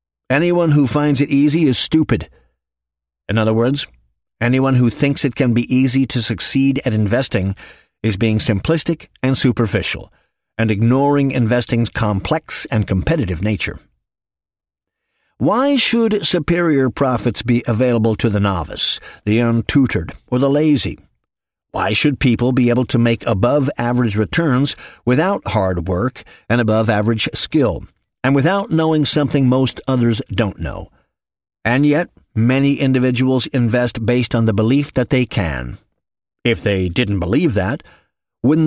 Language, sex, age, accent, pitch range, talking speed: English, male, 50-69, American, 110-140 Hz, 135 wpm